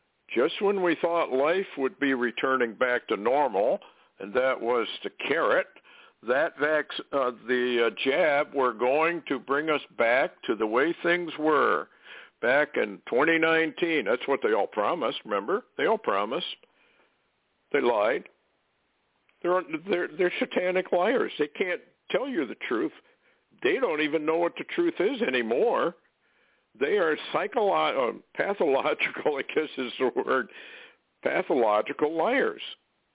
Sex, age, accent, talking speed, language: male, 60-79, American, 140 wpm, English